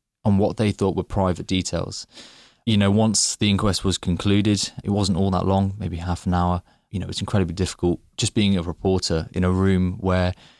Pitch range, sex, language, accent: 90-105 Hz, male, English, British